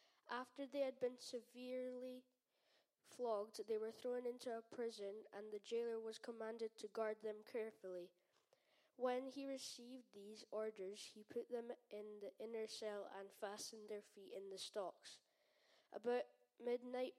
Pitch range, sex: 210-245 Hz, female